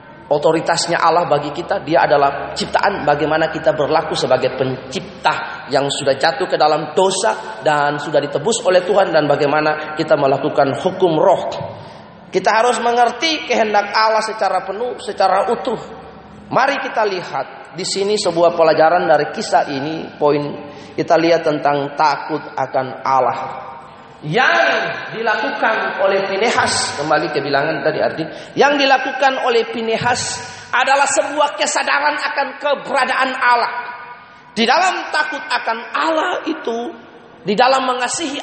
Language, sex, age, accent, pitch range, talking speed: Indonesian, male, 30-49, native, 155-240 Hz, 130 wpm